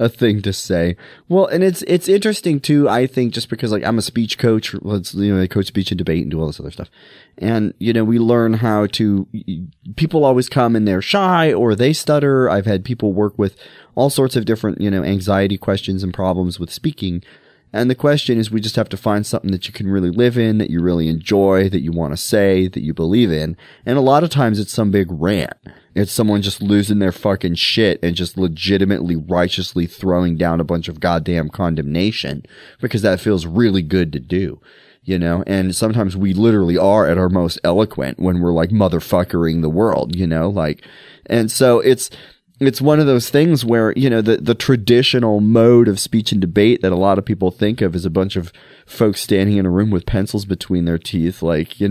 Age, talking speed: 30-49, 220 wpm